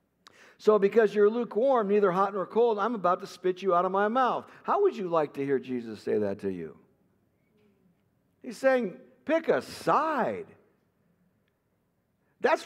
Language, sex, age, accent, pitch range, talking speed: English, male, 60-79, American, 175-245 Hz, 160 wpm